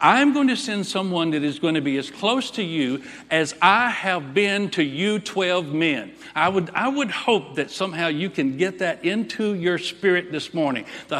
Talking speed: 210 wpm